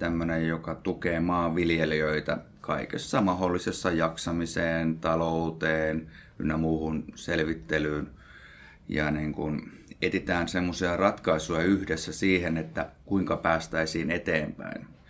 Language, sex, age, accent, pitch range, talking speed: Finnish, male, 30-49, native, 80-85 Hz, 90 wpm